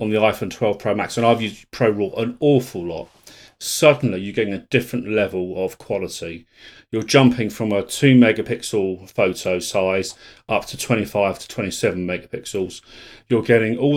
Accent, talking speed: British, 170 wpm